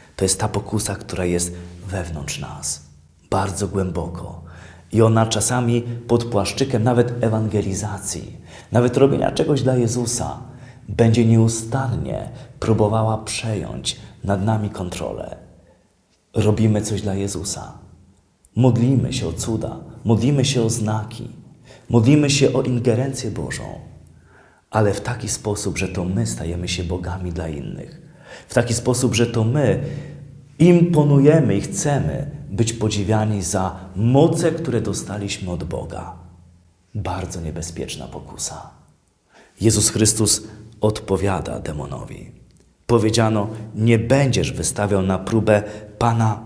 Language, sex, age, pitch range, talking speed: Polish, male, 30-49, 90-120 Hz, 115 wpm